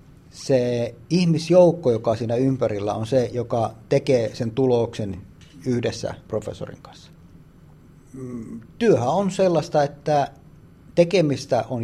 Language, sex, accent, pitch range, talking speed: Finnish, male, native, 125-160 Hz, 105 wpm